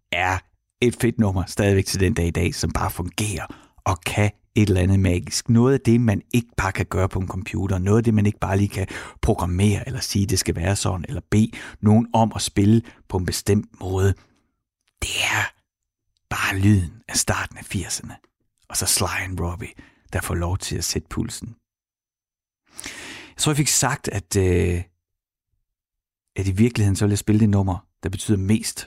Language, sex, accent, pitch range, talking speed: Danish, male, native, 90-110 Hz, 195 wpm